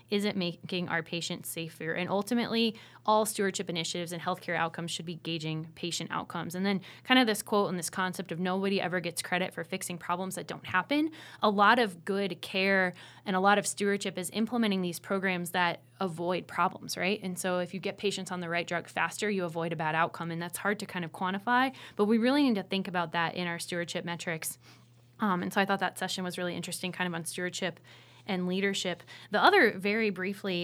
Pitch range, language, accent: 180-210 Hz, English, American